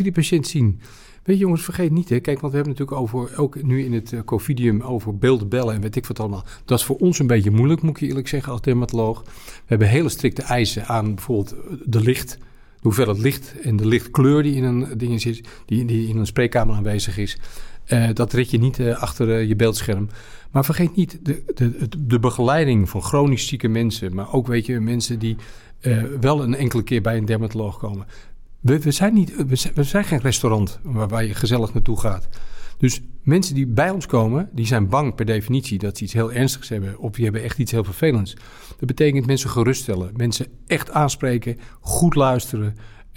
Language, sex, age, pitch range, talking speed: Dutch, male, 40-59, 110-140 Hz, 190 wpm